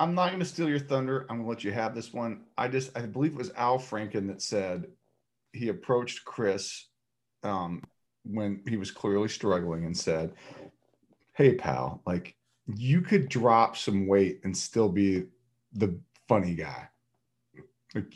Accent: American